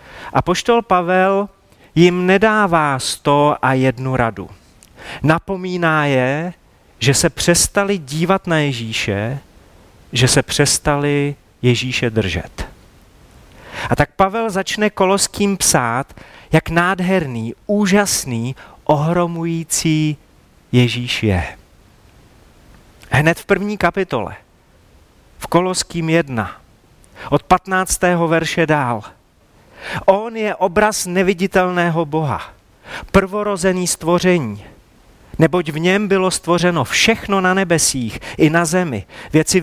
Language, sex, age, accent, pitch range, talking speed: Czech, male, 40-59, native, 130-185 Hz, 95 wpm